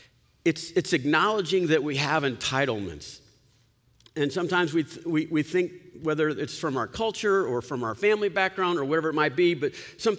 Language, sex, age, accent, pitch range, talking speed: English, male, 50-69, American, 135-195 Hz, 185 wpm